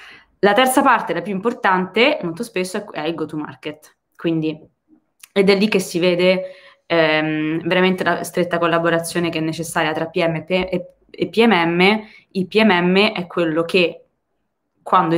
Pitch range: 160-185 Hz